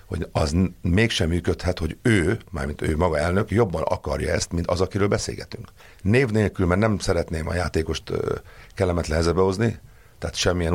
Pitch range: 85-100 Hz